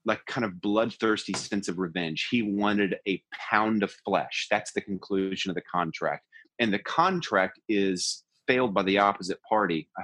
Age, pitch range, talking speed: 30-49, 95-135 Hz, 175 wpm